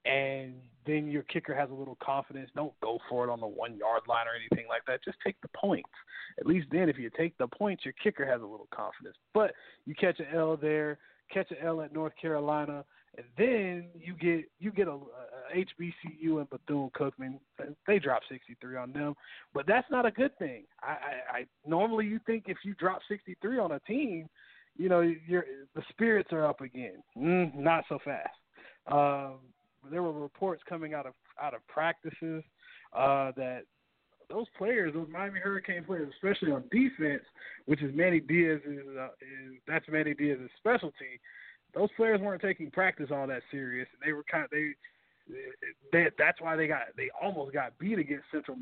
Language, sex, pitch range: English, male, 140-180 Hz